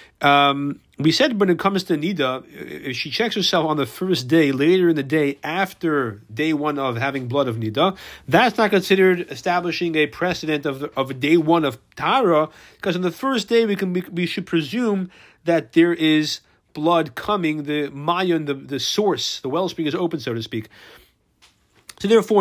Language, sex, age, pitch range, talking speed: English, male, 30-49, 135-170 Hz, 190 wpm